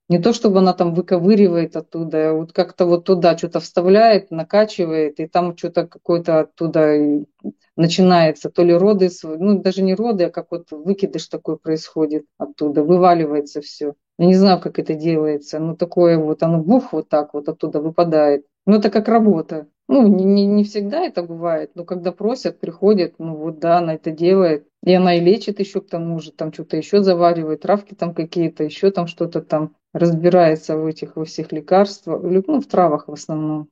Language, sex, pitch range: Russian, female, 160-190 Hz